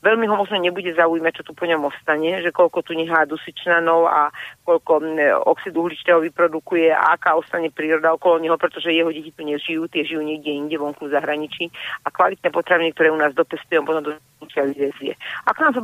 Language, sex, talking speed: Slovak, female, 195 wpm